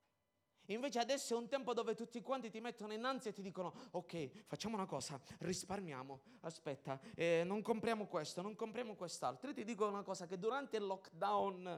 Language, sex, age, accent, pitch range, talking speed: Italian, male, 20-39, native, 160-215 Hz, 190 wpm